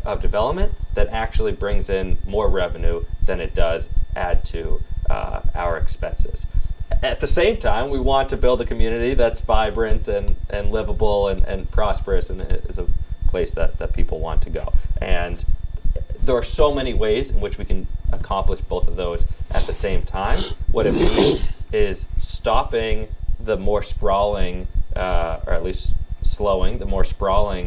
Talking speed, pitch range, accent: 170 wpm, 85-100 Hz, American